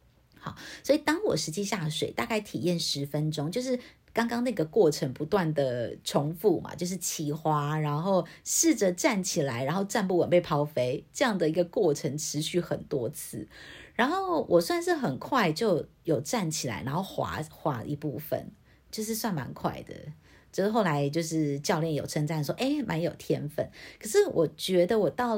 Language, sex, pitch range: Chinese, female, 155-225 Hz